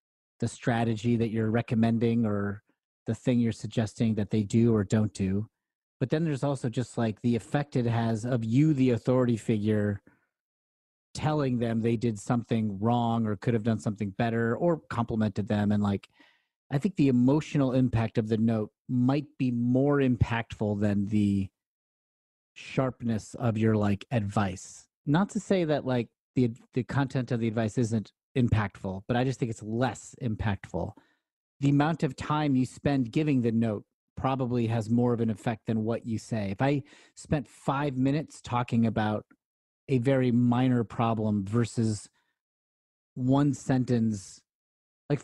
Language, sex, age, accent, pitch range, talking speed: English, male, 30-49, American, 110-130 Hz, 160 wpm